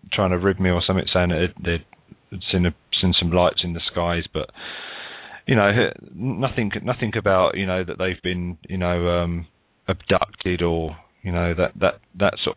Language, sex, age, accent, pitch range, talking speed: English, male, 30-49, British, 85-95 Hz, 180 wpm